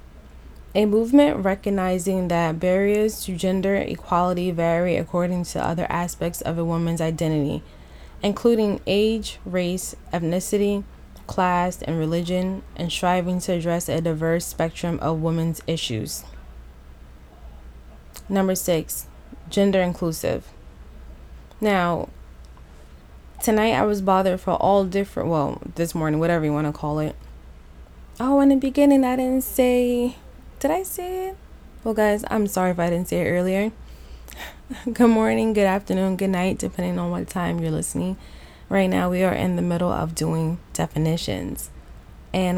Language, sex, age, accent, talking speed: English, female, 20-39, American, 140 wpm